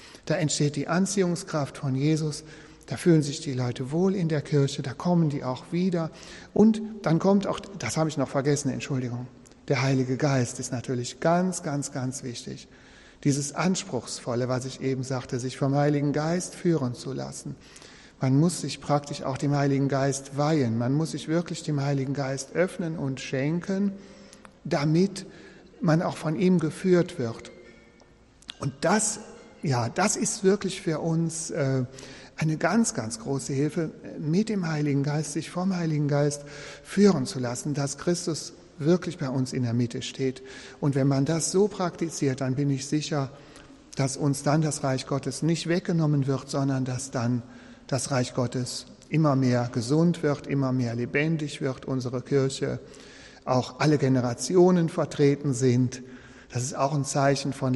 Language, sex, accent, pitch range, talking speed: German, male, German, 130-165 Hz, 165 wpm